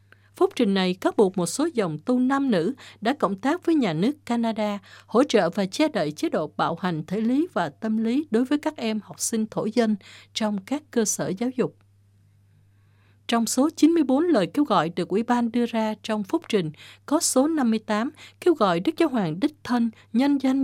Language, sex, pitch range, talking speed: Vietnamese, female, 180-260 Hz, 210 wpm